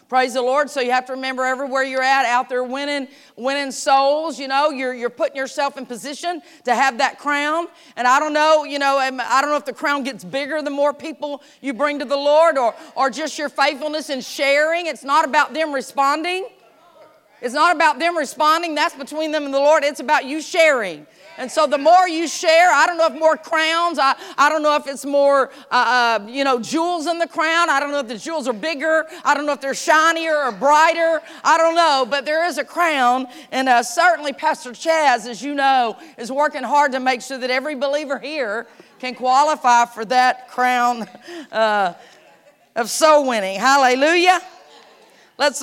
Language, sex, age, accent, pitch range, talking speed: English, female, 40-59, American, 260-315 Hz, 205 wpm